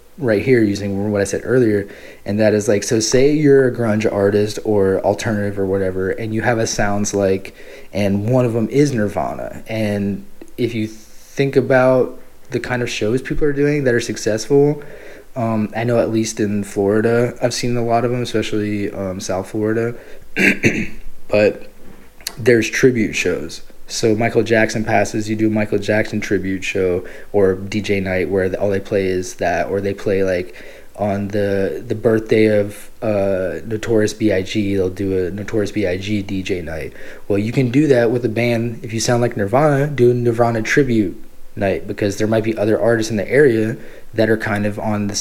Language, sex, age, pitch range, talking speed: English, male, 20-39, 100-115 Hz, 185 wpm